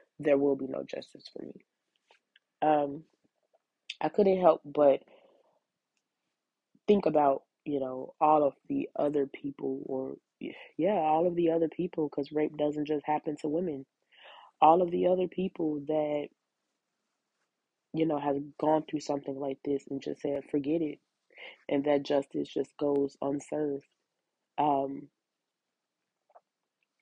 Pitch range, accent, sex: 140-165 Hz, American, female